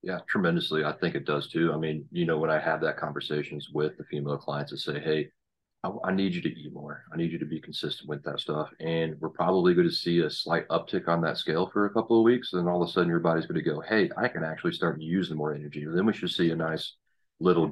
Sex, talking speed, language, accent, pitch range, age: male, 280 wpm, English, American, 75-90 Hz, 30-49